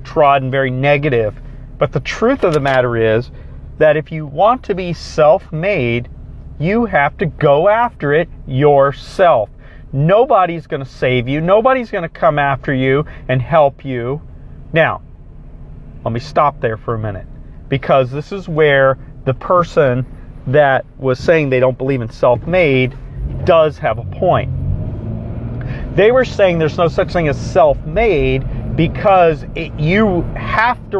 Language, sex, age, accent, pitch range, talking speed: English, male, 40-59, American, 130-185 Hz, 150 wpm